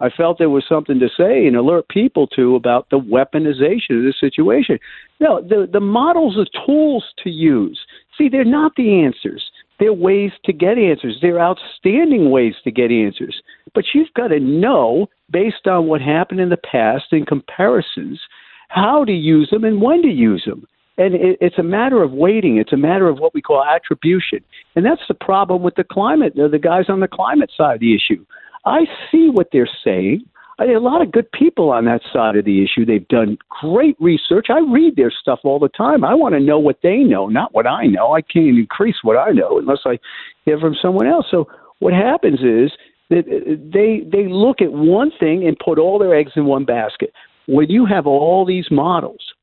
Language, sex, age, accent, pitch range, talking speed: English, male, 50-69, American, 145-240 Hz, 215 wpm